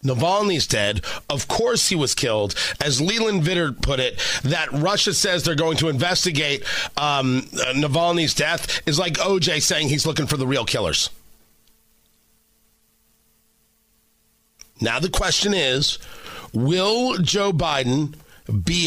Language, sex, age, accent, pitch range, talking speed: English, male, 40-59, American, 135-185 Hz, 125 wpm